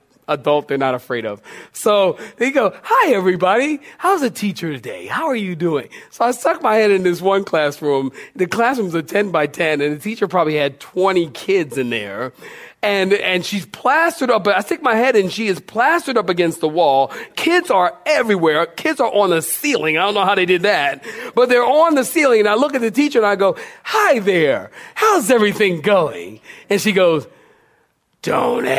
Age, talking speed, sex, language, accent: 40-59, 200 wpm, male, English, American